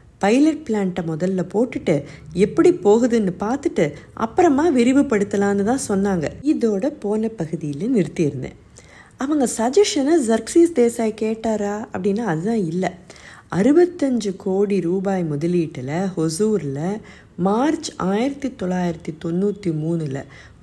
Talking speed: 90 wpm